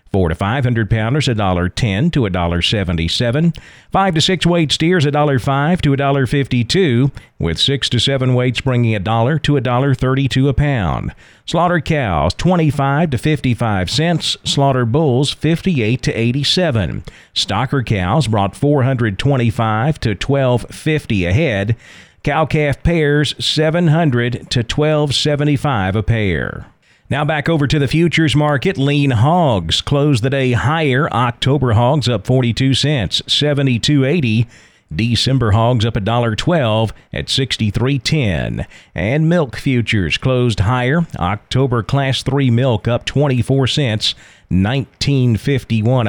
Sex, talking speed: male, 120 wpm